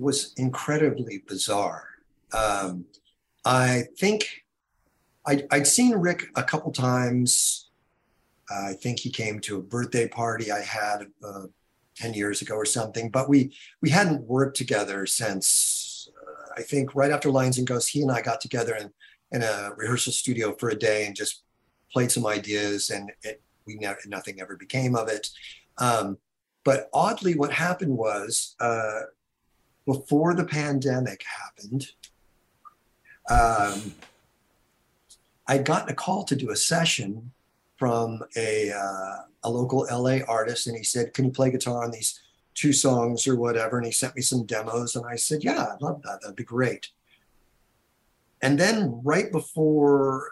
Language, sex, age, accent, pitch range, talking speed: English, male, 50-69, American, 115-140 Hz, 155 wpm